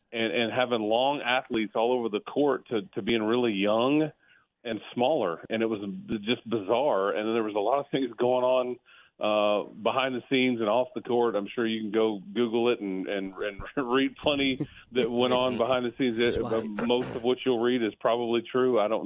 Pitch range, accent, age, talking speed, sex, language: 110-125 Hz, American, 40-59, 210 wpm, male, English